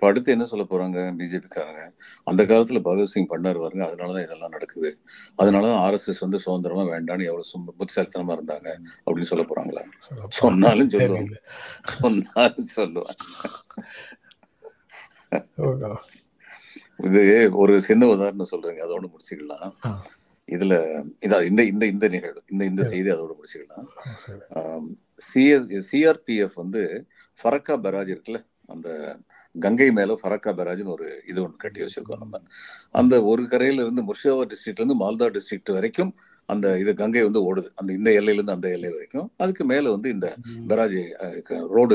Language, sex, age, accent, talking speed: Tamil, male, 50-69, native, 90 wpm